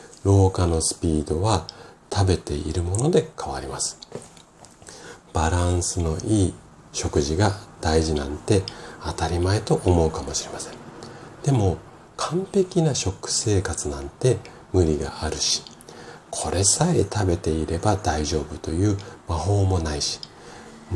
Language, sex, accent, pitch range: Japanese, male, native, 80-105 Hz